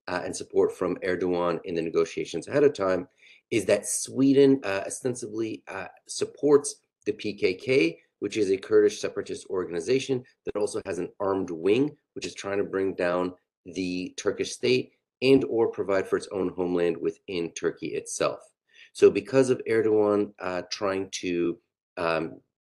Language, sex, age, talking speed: English, male, 30-49, 155 wpm